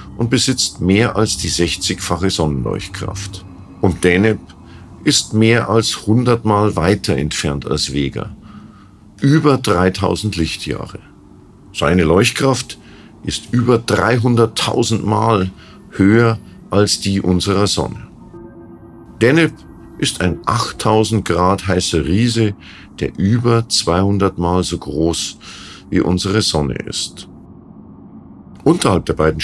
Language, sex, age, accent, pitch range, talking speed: German, male, 50-69, German, 85-110 Hz, 105 wpm